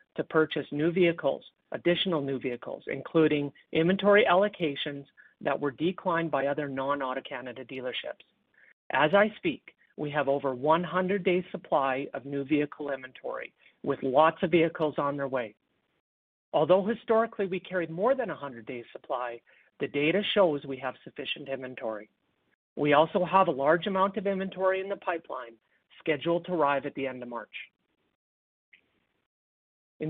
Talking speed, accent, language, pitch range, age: 150 wpm, American, English, 140-185 Hz, 50-69